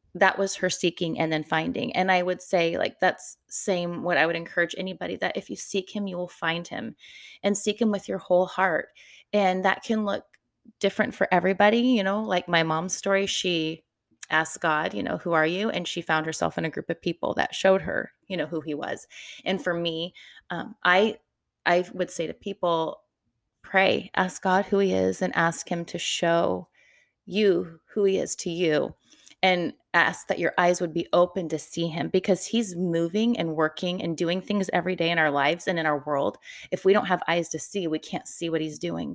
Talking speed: 215 wpm